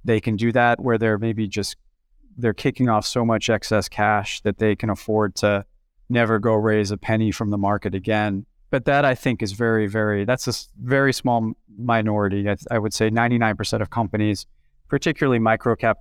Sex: male